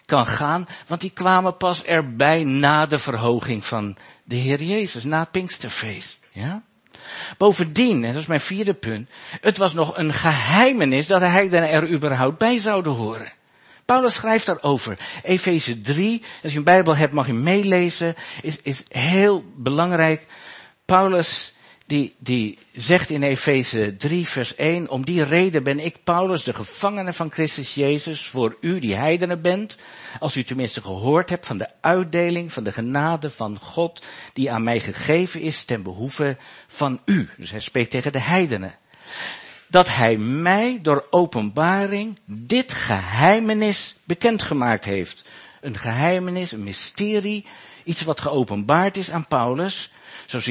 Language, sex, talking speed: Dutch, male, 150 wpm